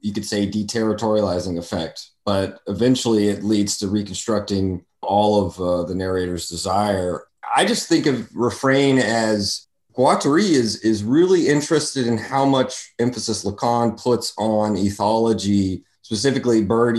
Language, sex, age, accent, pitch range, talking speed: English, male, 30-49, American, 100-120 Hz, 135 wpm